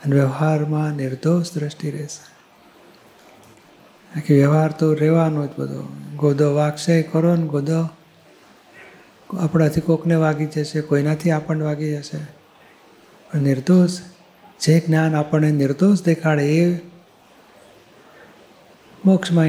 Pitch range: 150-165 Hz